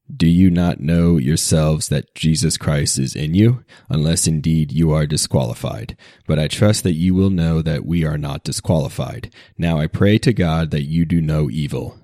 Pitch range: 75-95 Hz